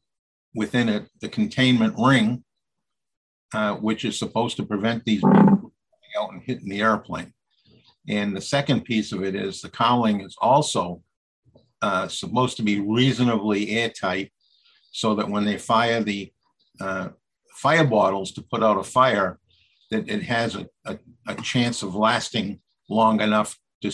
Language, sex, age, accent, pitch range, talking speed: English, male, 50-69, American, 105-125 Hz, 155 wpm